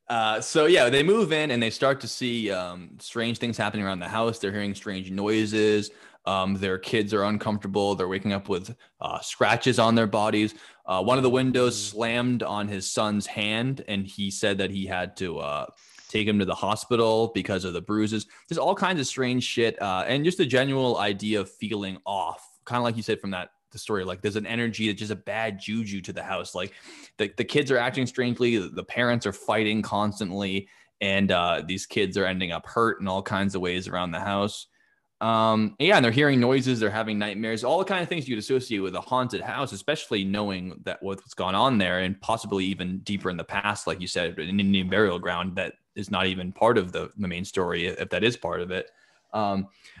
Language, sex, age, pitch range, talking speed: English, male, 20-39, 100-120 Hz, 220 wpm